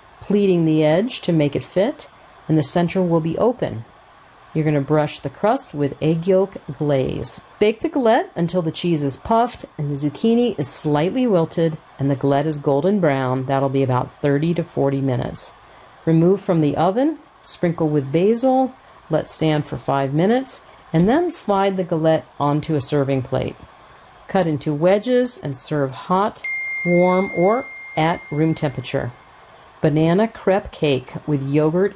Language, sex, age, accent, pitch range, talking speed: English, female, 50-69, American, 145-190 Hz, 165 wpm